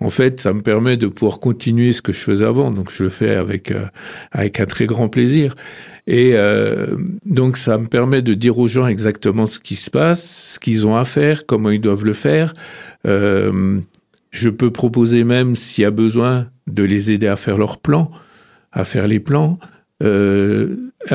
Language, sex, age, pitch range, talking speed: French, male, 50-69, 105-130 Hz, 200 wpm